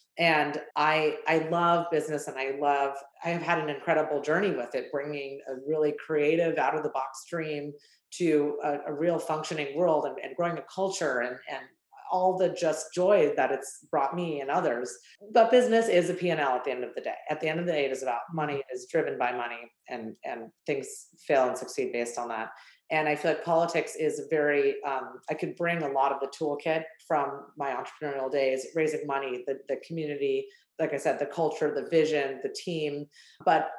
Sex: female